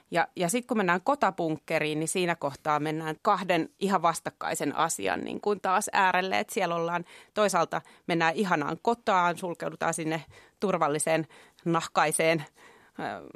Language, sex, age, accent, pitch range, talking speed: Finnish, female, 30-49, native, 160-195 Hz, 135 wpm